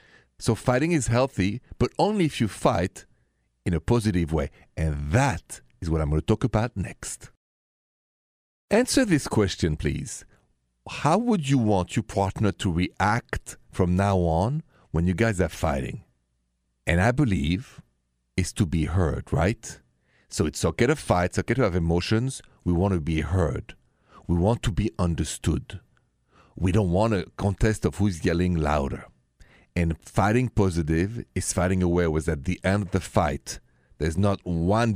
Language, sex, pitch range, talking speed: English, male, 80-115 Hz, 165 wpm